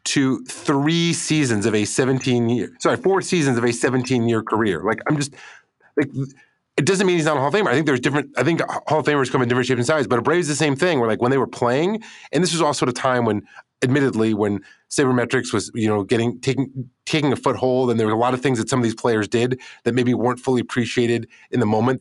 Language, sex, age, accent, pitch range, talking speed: English, male, 30-49, American, 110-135 Hz, 250 wpm